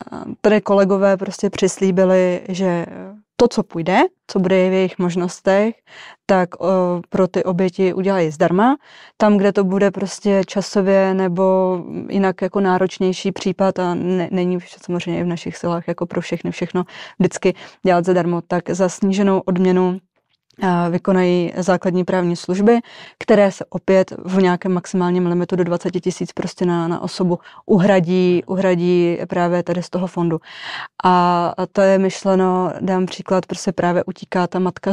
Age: 20-39